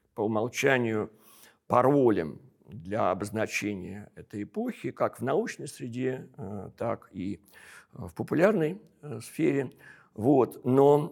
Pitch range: 105-125 Hz